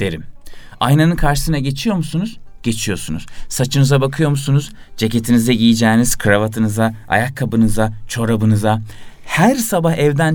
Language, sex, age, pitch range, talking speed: Turkish, male, 30-49, 115-155 Hz, 100 wpm